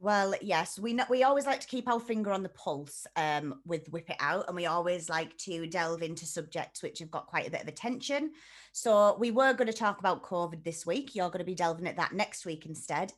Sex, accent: female, British